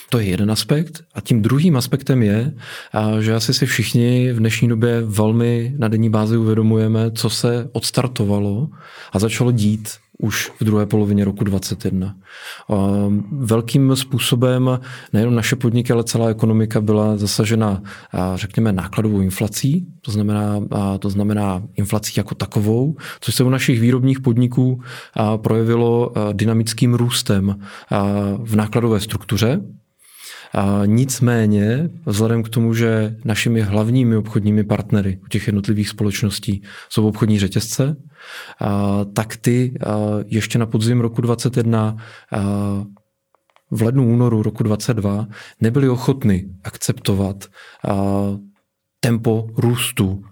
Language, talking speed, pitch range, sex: Czech, 125 wpm, 105-120 Hz, male